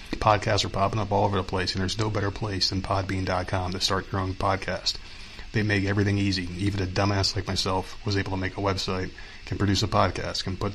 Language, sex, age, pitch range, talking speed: English, male, 30-49, 95-110 Hz, 230 wpm